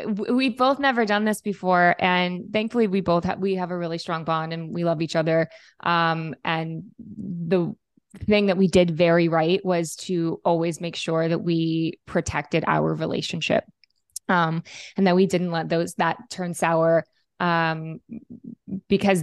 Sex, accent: female, American